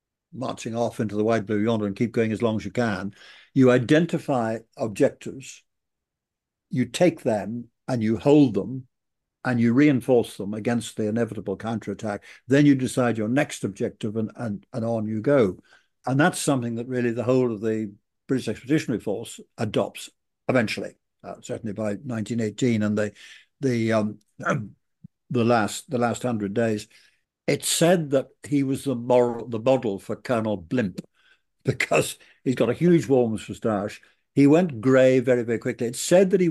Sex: male